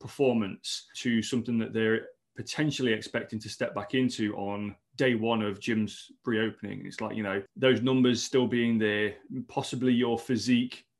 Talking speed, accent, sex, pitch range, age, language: 160 wpm, British, male, 110-125 Hz, 30-49, English